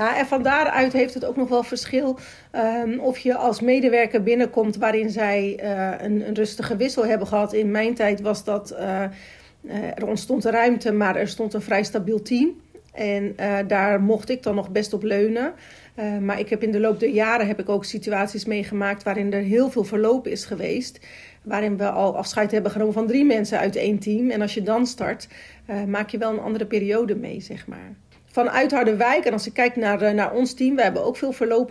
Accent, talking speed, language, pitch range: Dutch, 220 wpm, Dutch, 210-240 Hz